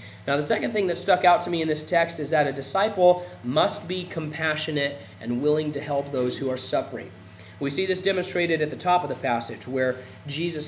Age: 30-49